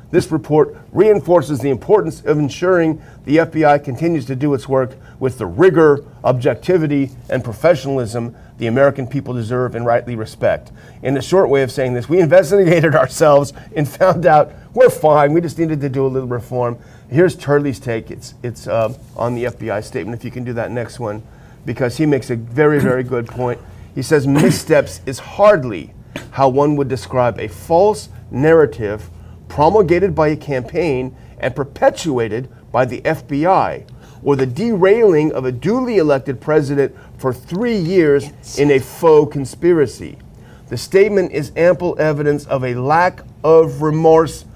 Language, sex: English, male